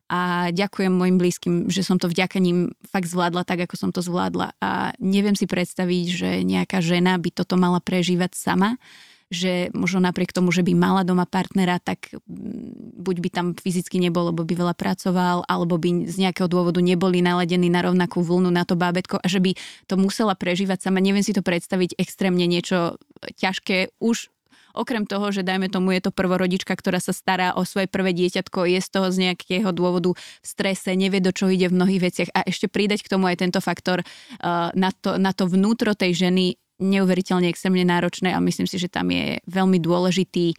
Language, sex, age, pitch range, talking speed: Slovak, female, 20-39, 180-195 Hz, 195 wpm